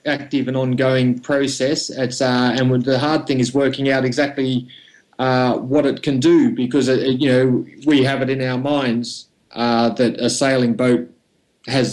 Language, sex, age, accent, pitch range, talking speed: English, male, 30-49, Australian, 120-140 Hz, 175 wpm